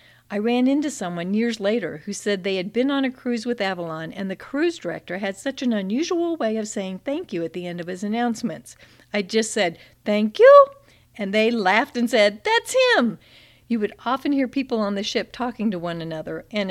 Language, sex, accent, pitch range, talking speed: English, female, American, 175-245 Hz, 215 wpm